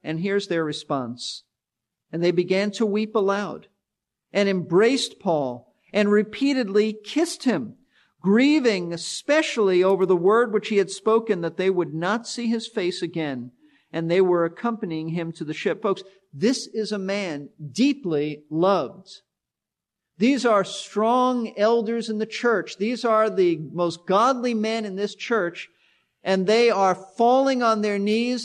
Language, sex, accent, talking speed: English, male, American, 150 wpm